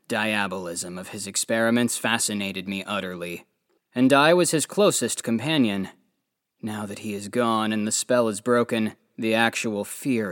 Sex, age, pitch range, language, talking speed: male, 20-39, 100-125 Hz, English, 150 wpm